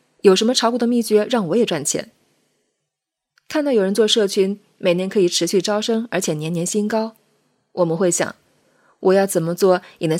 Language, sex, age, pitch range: Chinese, female, 20-39, 175-225 Hz